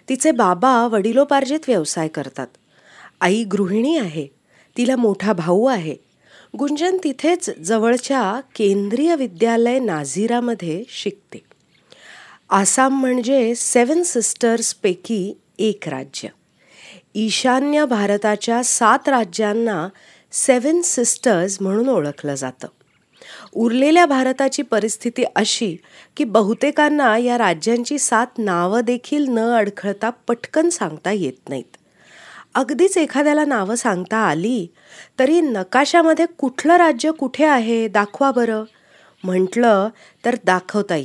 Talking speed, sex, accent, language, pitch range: 100 wpm, female, native, Marathi, 205-275 Hz